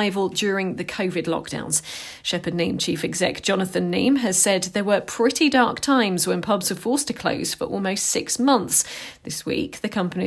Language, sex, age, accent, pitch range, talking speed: English, female, 40-59, British, 175-235 Hz, 180 wpm